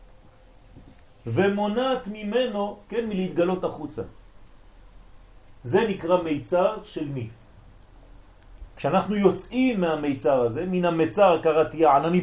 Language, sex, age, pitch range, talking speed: French, male, 40-59, 120-185 Hz, 90 wpm